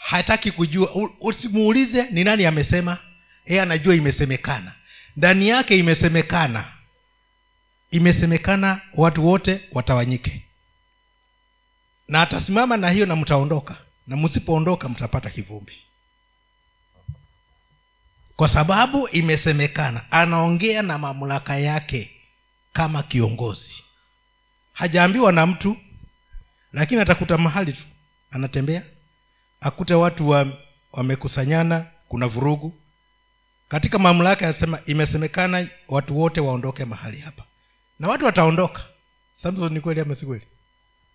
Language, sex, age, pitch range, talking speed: Swahili, male, 50-69, 145-210 Hz, 95 wpm